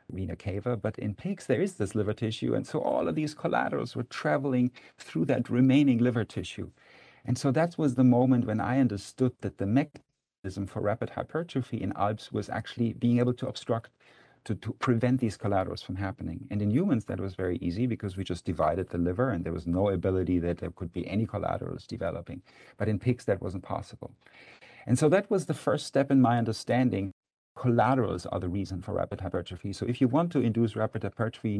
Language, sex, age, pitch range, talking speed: English, male, 50-69, 100-125 Hz, 205 wpm